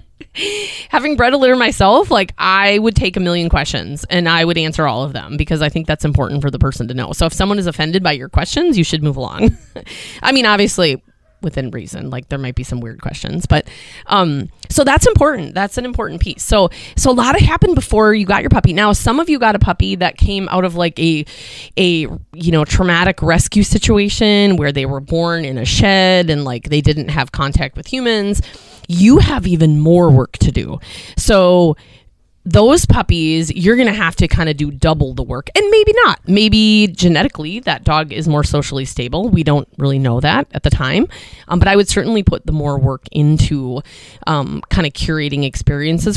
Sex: female